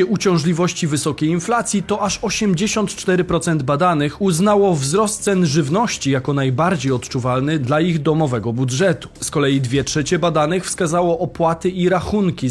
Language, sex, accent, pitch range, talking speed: Polish, male, native, 145-185 Hz, 130 wpm